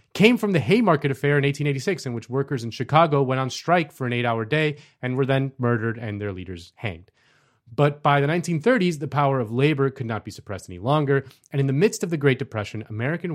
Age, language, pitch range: 30-49, English, 110-150 Hz